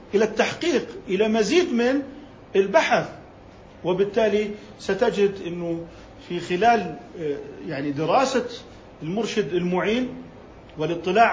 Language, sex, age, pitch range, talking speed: Arabic, male, 50-69, 150-205 Hz, 85 wpm